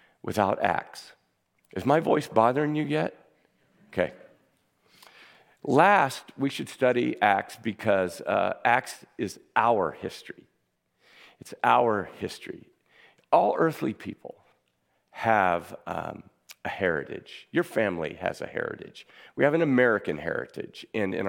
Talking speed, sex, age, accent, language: 120 wpm, male, 50-69, American, English